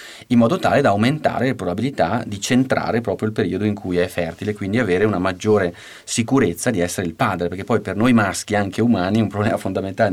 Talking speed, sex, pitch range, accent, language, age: 205 wpm, male, 95-115 Hz, native, Italian, 30-49